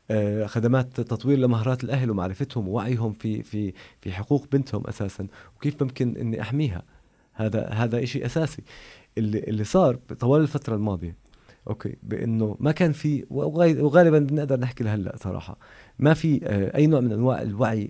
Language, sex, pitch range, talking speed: Arabic, male, 105-135 Hz, 145 wpm